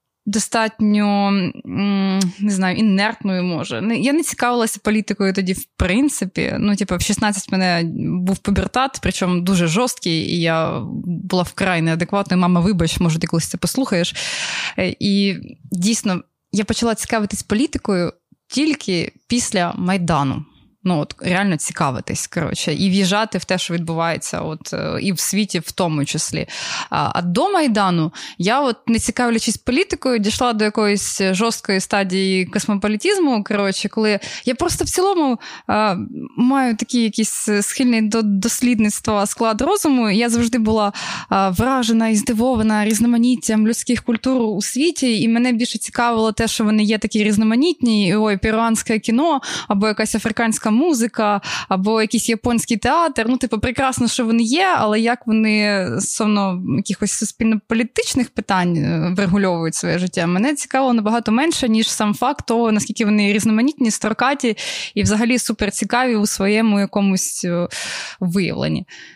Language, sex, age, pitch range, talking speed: Ukrainian, female, 20-39, 195-235 Hz, 140 wpm